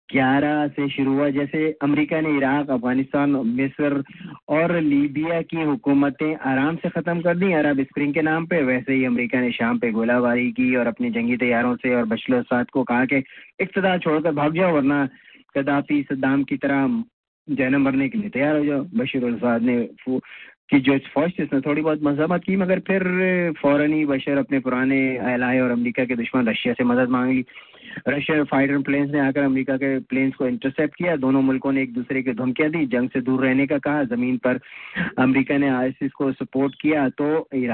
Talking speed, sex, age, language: 170 wpm, male, 30-49, English